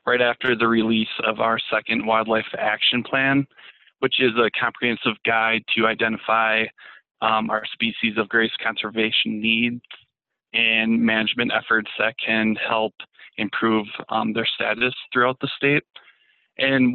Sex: male